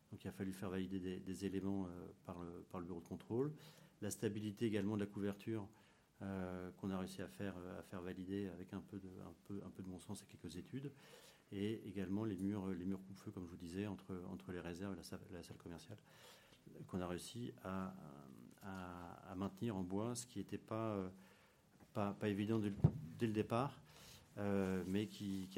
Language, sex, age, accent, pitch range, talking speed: French, male, 40-59, French, 95-110 Hz, 215 wpm